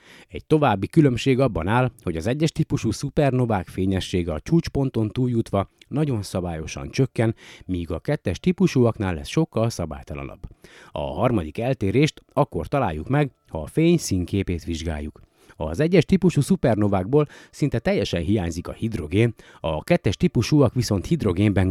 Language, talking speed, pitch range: Hungarian, 135 wpm, 95-140 Hz